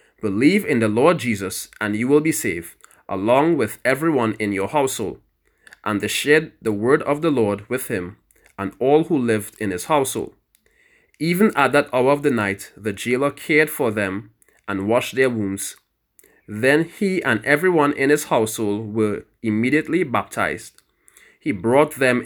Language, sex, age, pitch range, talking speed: English, male, 20-39, 110-155 Hz, 165 wpm